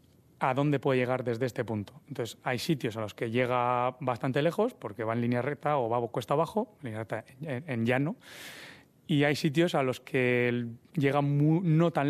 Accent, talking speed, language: Spanish, 210 wpm, Spanish